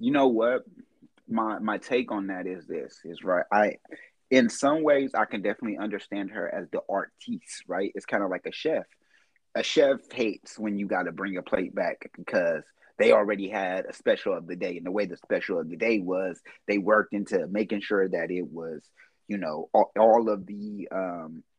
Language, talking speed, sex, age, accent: English, 210 wpm, male, 30-49, American